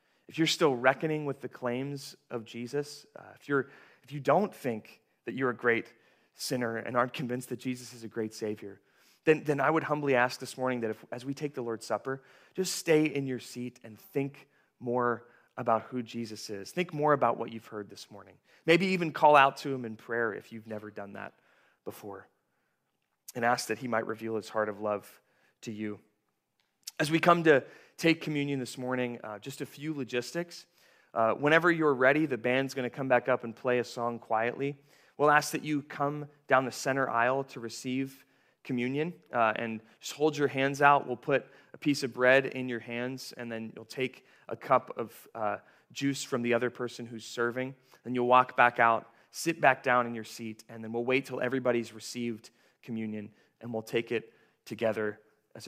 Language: English